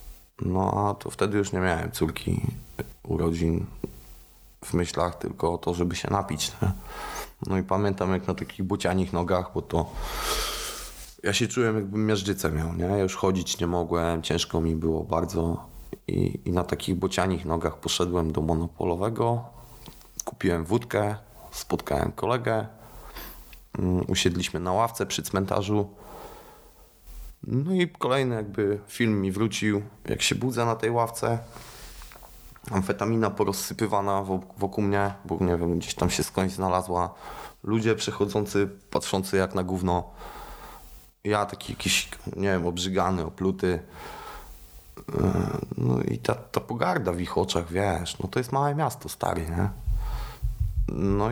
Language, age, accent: Polish, 20-39, native